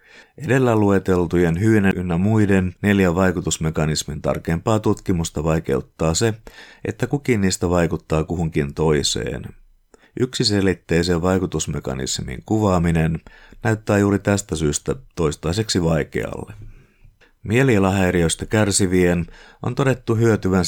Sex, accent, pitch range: male, native, 80-100 Hz